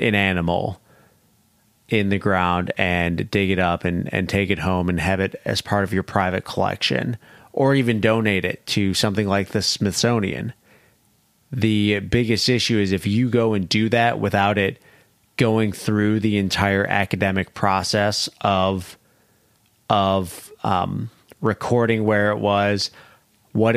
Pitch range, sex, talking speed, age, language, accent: 100-110 Hz, male, 145 wpm, 30-49, English, American